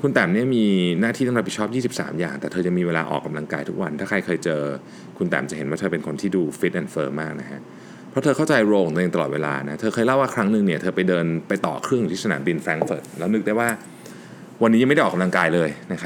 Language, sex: Thai, male